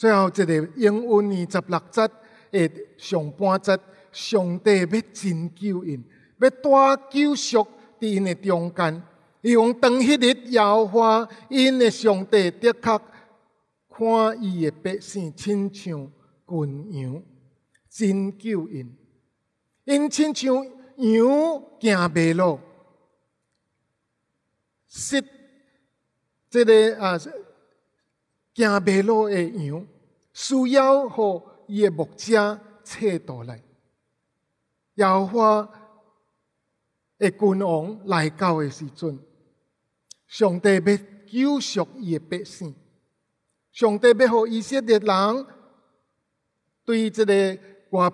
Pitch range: 170-225 Hz